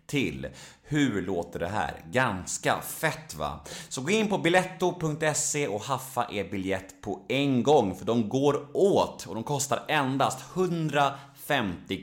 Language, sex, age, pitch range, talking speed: Swedish, male, 30-49, 95-150 Hz, 145 wpm